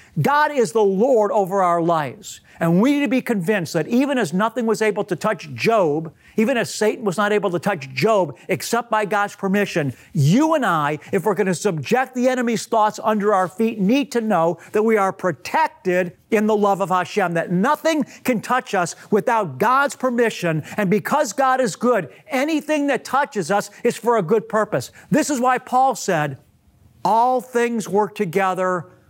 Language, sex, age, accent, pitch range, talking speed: English, male, 50-69, American, 170-230 Hz, 190 wpm